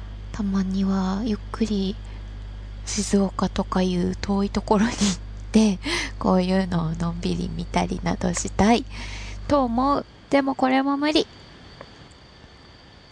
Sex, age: female, 20-39